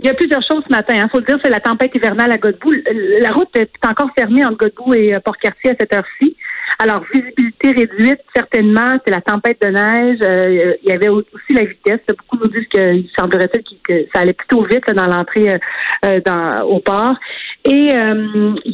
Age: 40-59